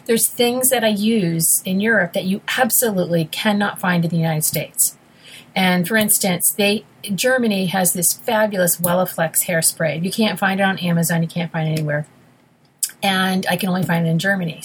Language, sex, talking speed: English, female, 185 wpm